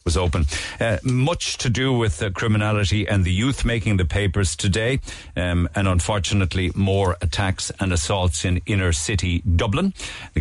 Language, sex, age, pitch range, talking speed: English, male, 50-69, 90-110 Hz, 160 wpm